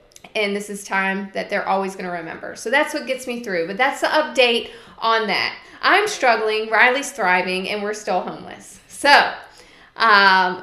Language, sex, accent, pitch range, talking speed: English, female, American, 195-250 Hz, 180 wpm